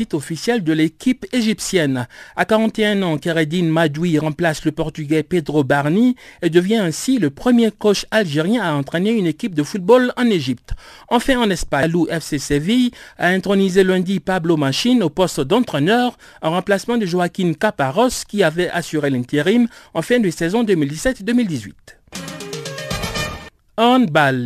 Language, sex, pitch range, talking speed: French, male, 150-215 Hz, 140 wpm